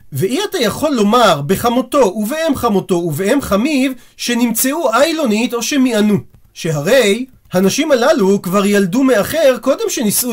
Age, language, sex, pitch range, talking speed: 40-59, Hebrew, male, 185-270 Hz, 120 wpm